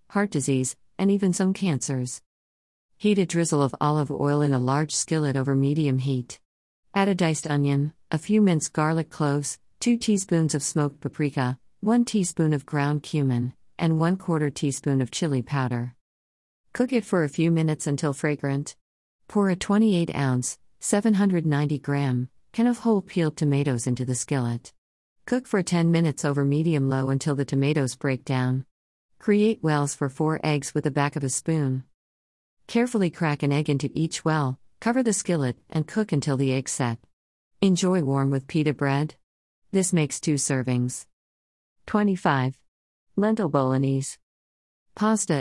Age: 50-69